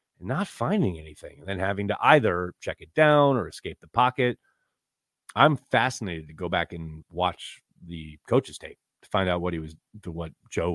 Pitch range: 90-125 Hz